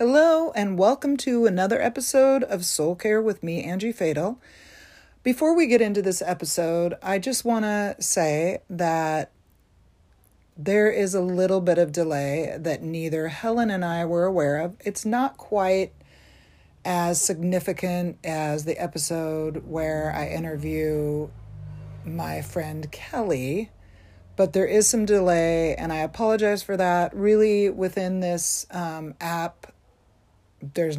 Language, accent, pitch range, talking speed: English, American, 160-200 Hz, 135 wpm